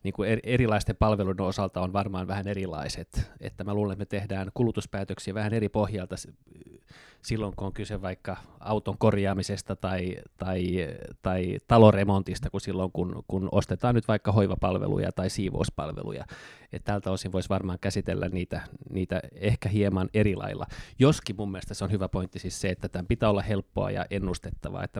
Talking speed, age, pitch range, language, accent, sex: 165 wpm, 20-39, 95-115 Hz, Finnish, native, male